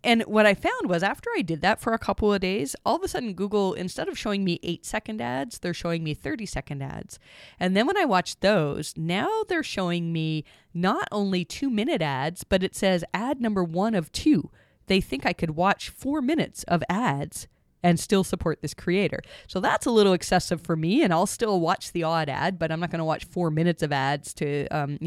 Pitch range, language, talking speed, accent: 160-210 Hz, English, 225 wpm, American